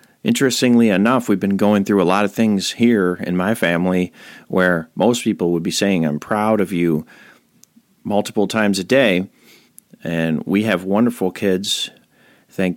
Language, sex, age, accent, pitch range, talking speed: English, male, 40-59, American, 90-105 Hz, 160 wpm